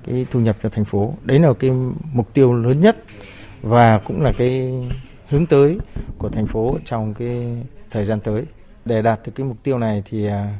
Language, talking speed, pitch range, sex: Vietnamese, 200 wpm, 105-130 Hz, male